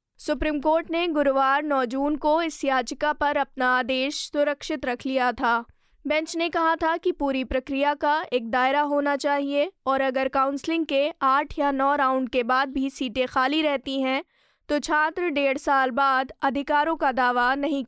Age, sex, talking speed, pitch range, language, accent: 20-39, female, 180 wpm, 260-300 Hz, Hindi, native